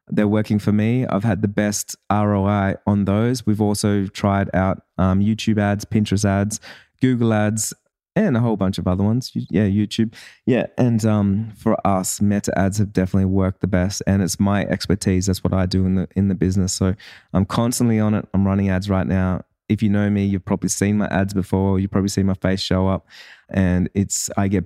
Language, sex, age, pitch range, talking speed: English, male, 20-39, 95-105 Hz, 210 wpm